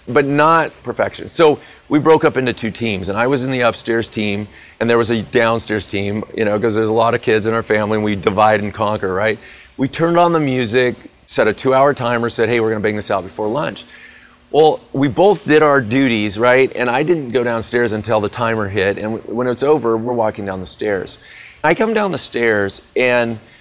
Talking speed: 230 wpm